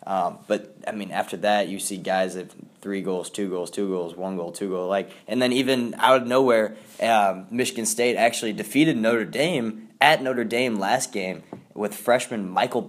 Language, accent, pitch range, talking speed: English, American, 95-115 Hz, 195 wpm